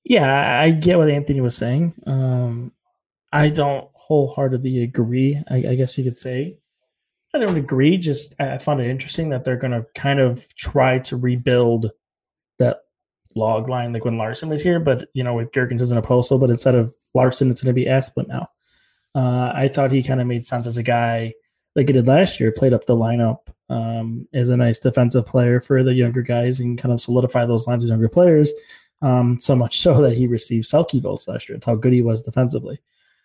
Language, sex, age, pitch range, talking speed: English, male, 20-39, 120-145 Hz, 210 wpm